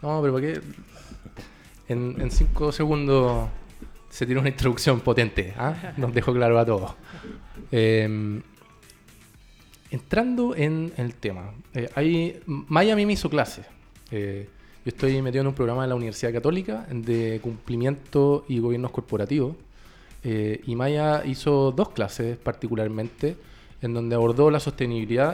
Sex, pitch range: male, 120-150 Hz